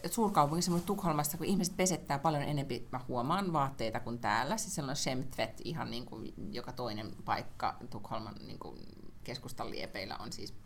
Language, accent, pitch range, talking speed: Finnish, native, 120-165 Hz, 145 wpm